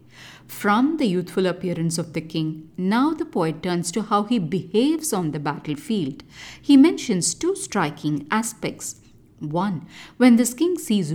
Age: 50-69